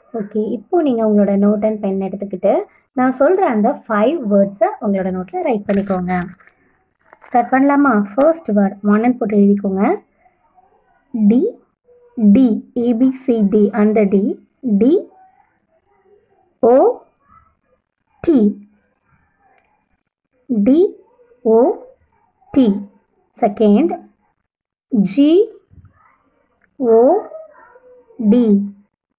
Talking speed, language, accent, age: 70 wpm, Tamil, native, 20-39